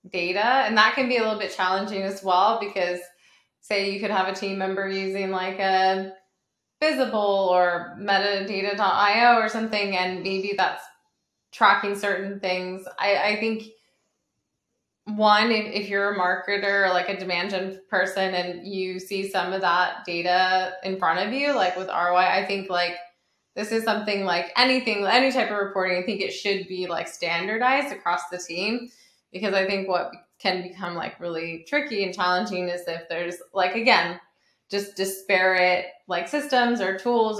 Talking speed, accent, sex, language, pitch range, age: 170 wpm, American, female, English, 180-200 Hz, 20-39